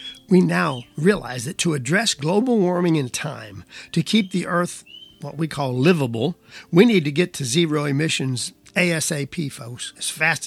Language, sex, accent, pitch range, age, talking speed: English, male, American, 135-180 Hz, 50-69, 165 wpm